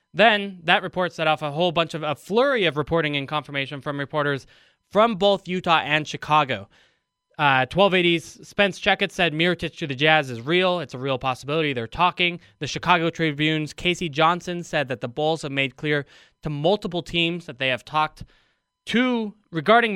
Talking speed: 180 wpm